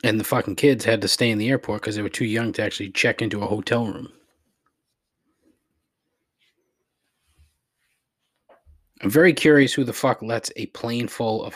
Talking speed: 170 wpm